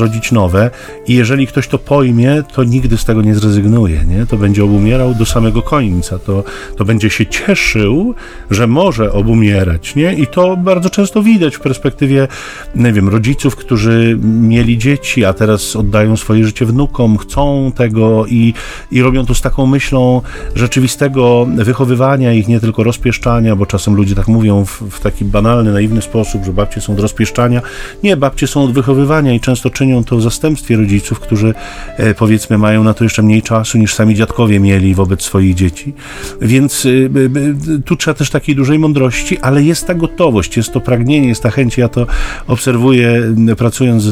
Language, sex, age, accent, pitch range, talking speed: Polish, male, 40-59, native, 110-135 Hz, 180 wpm